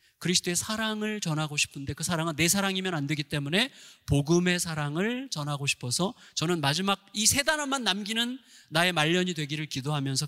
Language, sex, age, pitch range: Korean, male, 30-49, 140-185 Hz